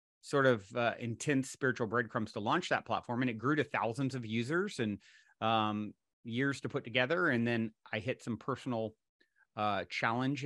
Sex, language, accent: male, English, American